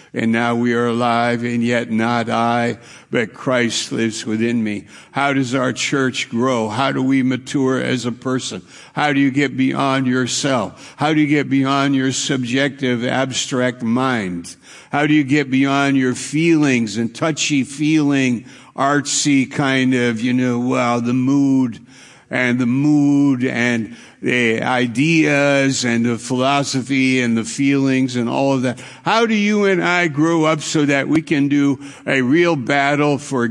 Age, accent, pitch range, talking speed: 60-79, American, 120-140 Hz, 160 wpm